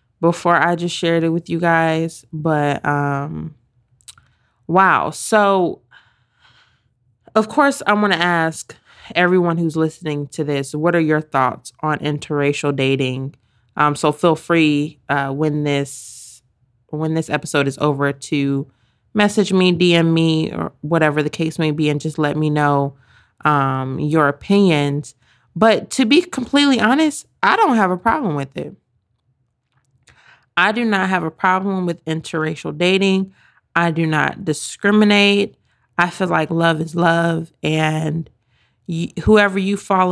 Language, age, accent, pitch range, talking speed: English, 20-39, American, 140-175 Hz, 145 wpm